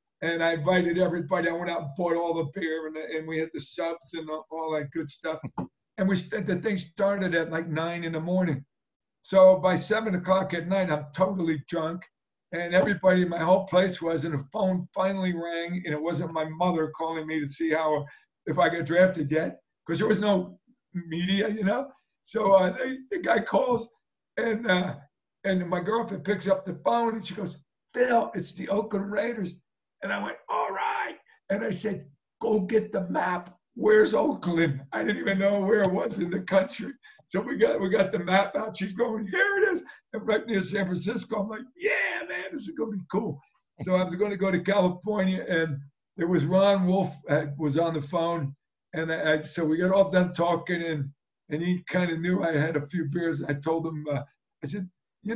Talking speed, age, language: 215 wpm, 50-69, English